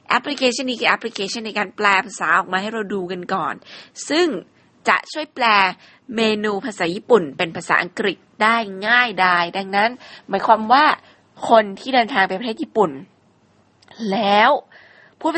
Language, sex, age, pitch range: Thai, female, 20-39, 190-230 Hz